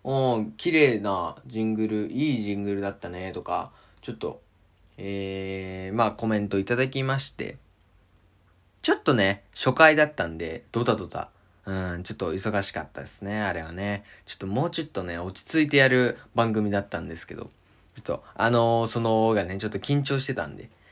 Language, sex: Japanese, male